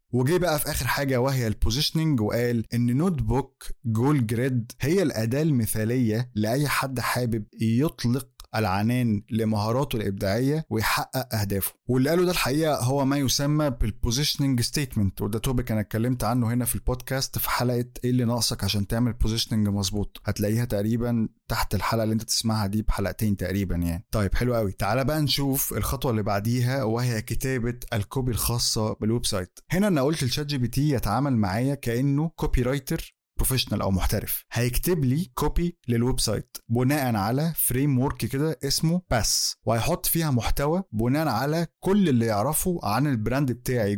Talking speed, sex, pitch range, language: 155 wpm, male, 110-140 Hz, Arabic